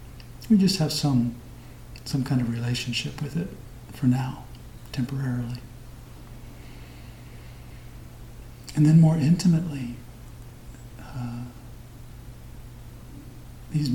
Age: 50-69